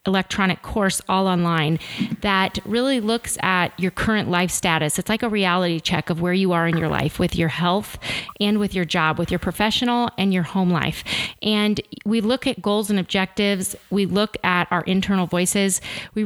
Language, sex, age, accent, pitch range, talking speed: English, female, 30-49, American, 175-210 Hz, 190 wpm